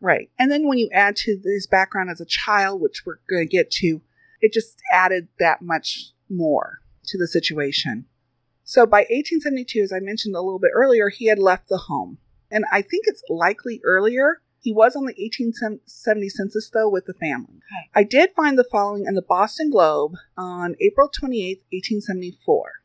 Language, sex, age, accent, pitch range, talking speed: English, female, 40-59, American, 180-255 Hz, 185 wpm